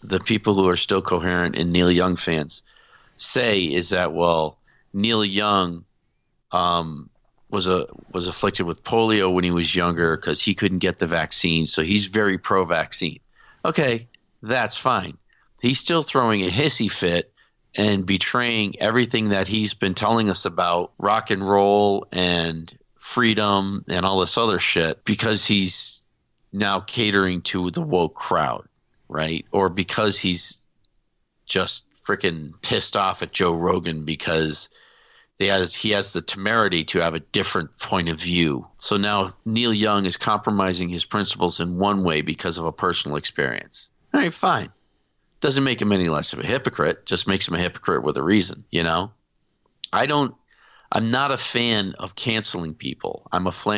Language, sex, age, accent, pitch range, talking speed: English, male, 40-59, American, 90-105 Hz, 165 wpm